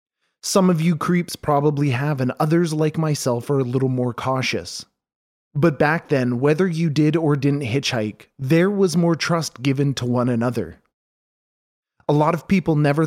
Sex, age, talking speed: male, 30-49, 170 wpm